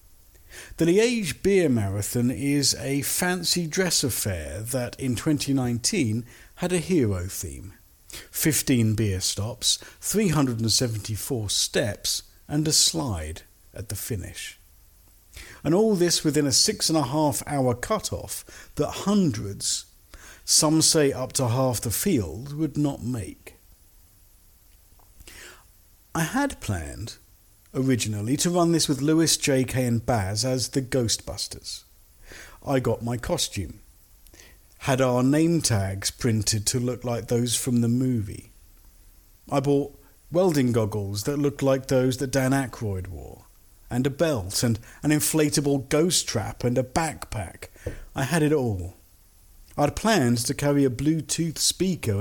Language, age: English, 50-69